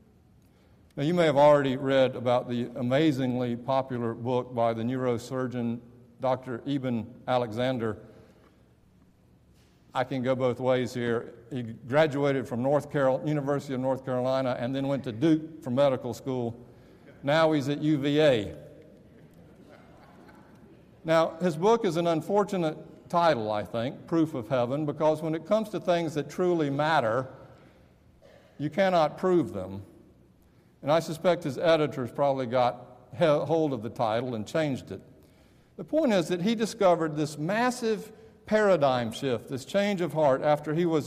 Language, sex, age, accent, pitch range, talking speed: English, male, 50-69, American, 125-160 Hz, 145 wpm